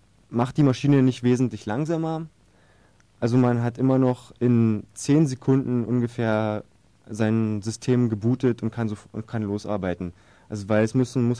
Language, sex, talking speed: German, male, 155 wpm